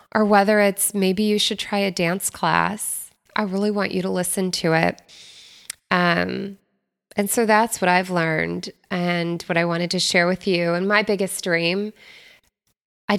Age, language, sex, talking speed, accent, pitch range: 20-39, English, female, 175 wpm, American, 165-190 Hz